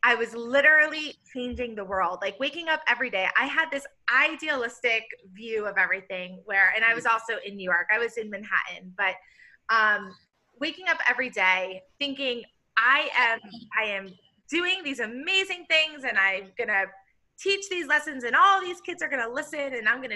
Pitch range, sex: 210-290 Hz, female